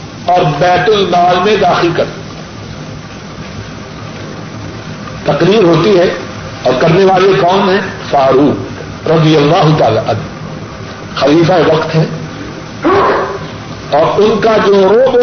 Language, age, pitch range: Urdu, 50-69, 185-255 Hz